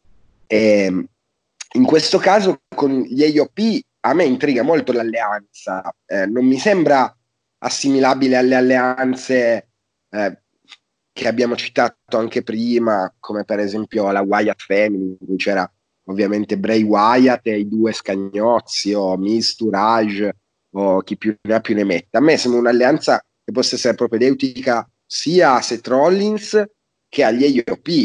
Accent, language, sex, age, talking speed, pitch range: native, Italian, male, 30-49, 140 wpm, 100-125 Hz